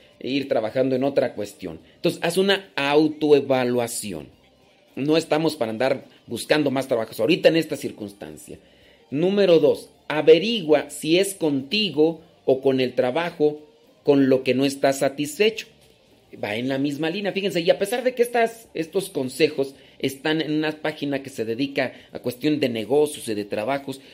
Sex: male